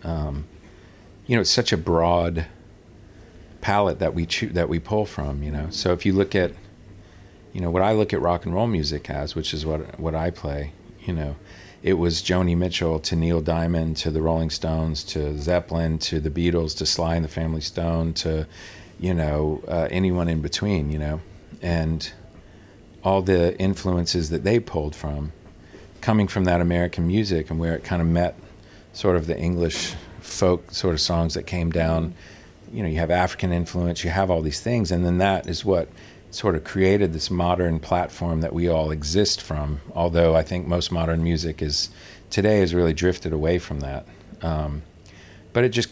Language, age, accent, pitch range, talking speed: English, 40-59, American, 80-95 Hz, 190 wpm